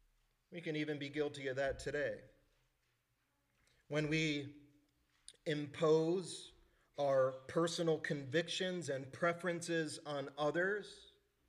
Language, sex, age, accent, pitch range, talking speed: English, male, 40-59, American, 140-175 Hz, 95 wpm